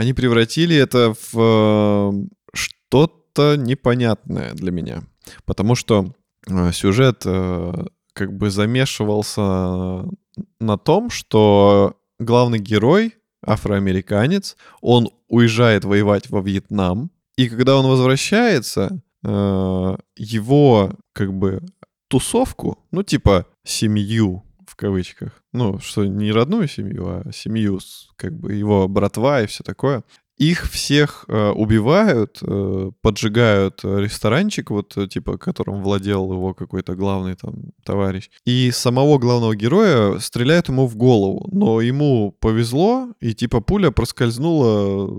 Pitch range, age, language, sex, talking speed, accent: 100-135 Hz, 20-39, Russian, male, 110 wpm, native